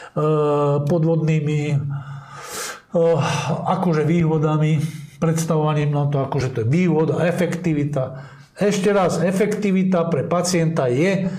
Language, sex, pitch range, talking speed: Slovak, male, 150-180 Hz, 95 wpm